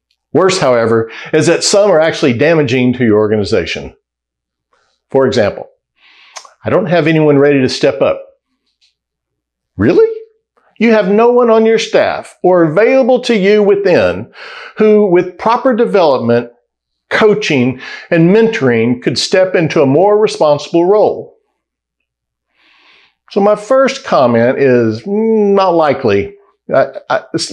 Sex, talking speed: male, 120 wpm